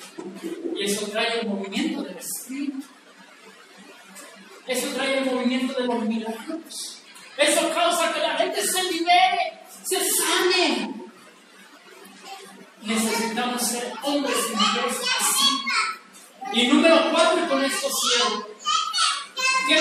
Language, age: Spanish, 40-59